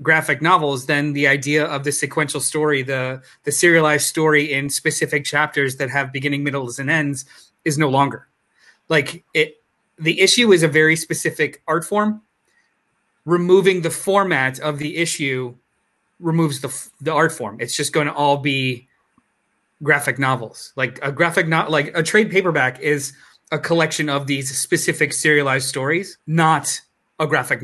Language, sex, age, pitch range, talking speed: English, male, 30-49, 135-165 Hz, 160 wpm